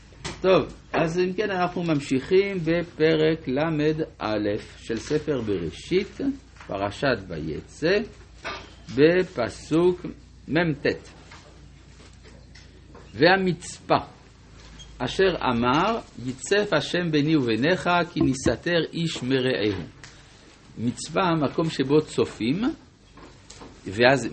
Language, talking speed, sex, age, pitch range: Hebrew, 75 wpm, male, 60-79, 105-160 Hz